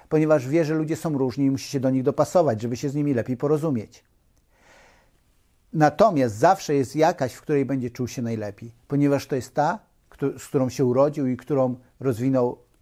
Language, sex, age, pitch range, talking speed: Polish, male, 50-69, 130-175 Hz, 185 wpm